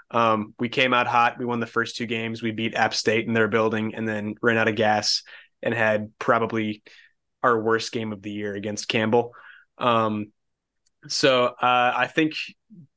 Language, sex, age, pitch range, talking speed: English, male, 20-39, 110-125 Hz, 185 wpm